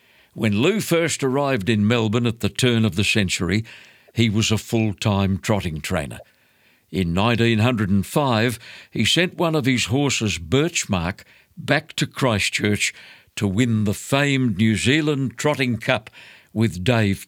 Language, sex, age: English, male, 60-79